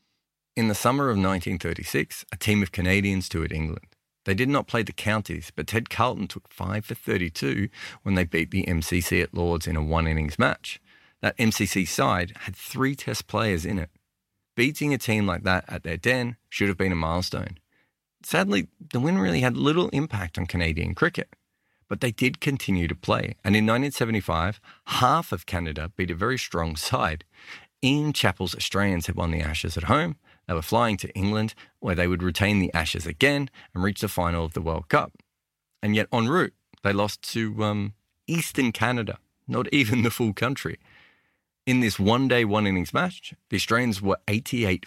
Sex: male